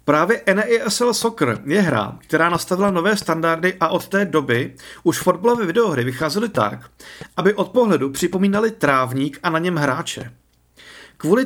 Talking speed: 145 wpm